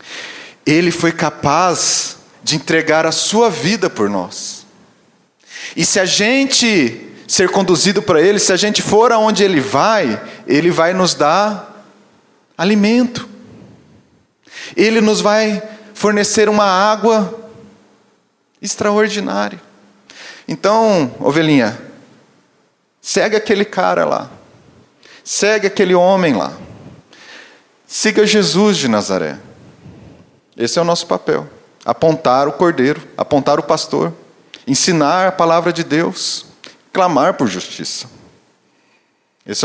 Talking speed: 105 wpm